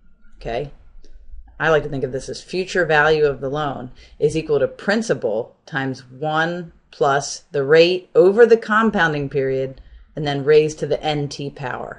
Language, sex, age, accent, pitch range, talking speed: English, female, 30-49, American, 135-180 Hz, 165 wpm